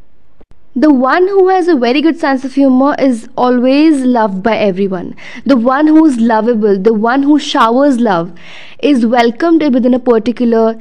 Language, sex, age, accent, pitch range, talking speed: Hindi, female, 20-39, native, 240-310 Hz, 165 wpm